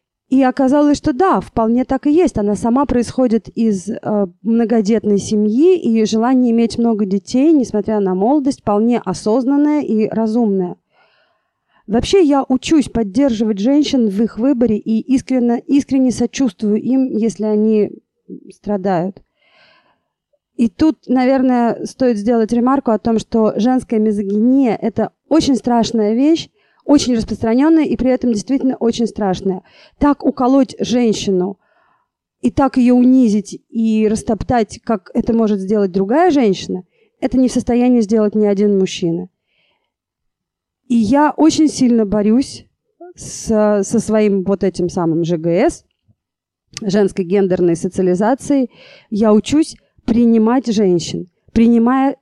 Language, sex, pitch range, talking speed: Russian, female, 210-260 Hz, 125 wpm